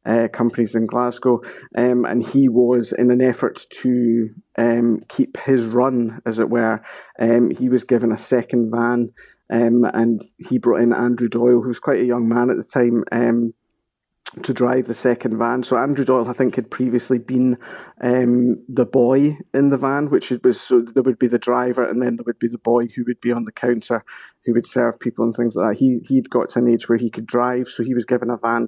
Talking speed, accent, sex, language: 220 wpm, British, male, English